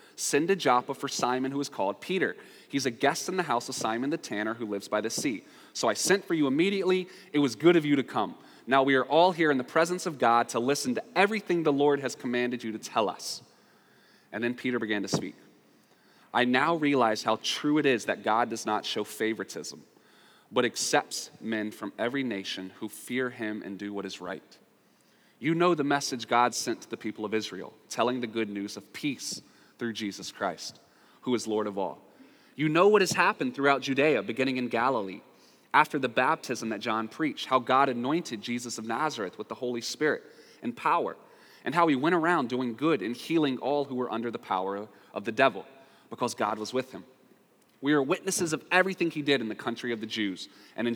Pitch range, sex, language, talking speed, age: 110-150 Hz, male, English, 215 wpm, 30-49